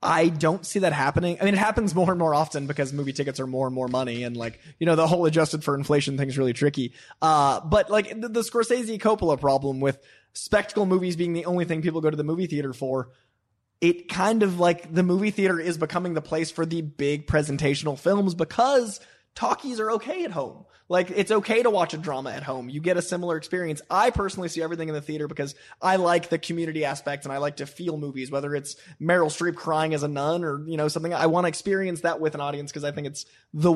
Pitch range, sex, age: 145-180 Hz, male, 20-39